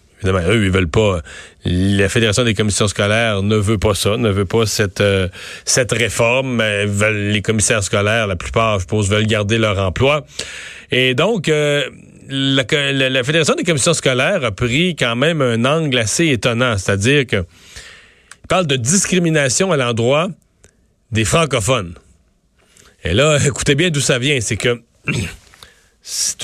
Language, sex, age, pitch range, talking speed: French, male, 40-59, 110-145 Hz, 160 wpm